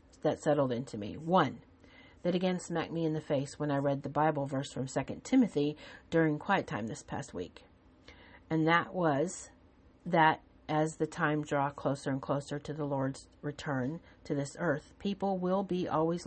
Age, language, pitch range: 40-59, English, 150-180 Hz